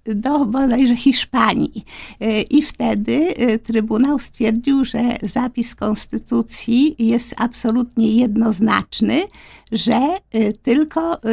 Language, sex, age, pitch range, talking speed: Polish, female, 50-69, 225-260 Hz, 80 wpm